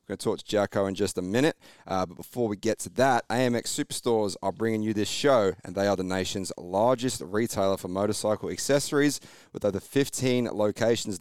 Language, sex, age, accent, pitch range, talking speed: English, male, 30-49, Australian, 100-120 Hz, 200 wpm